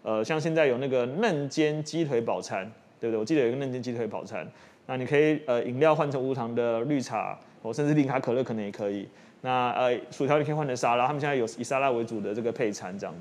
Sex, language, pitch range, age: male, Chinese, 125-170 Hz, 20-39